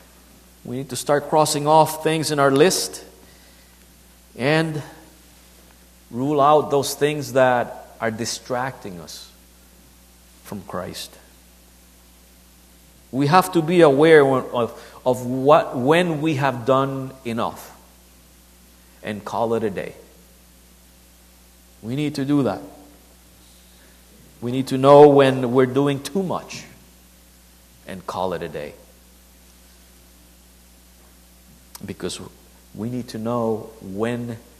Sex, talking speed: male, 110 wpm